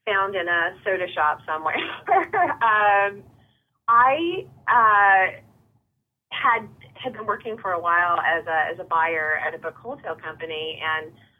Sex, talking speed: female, 140 wpm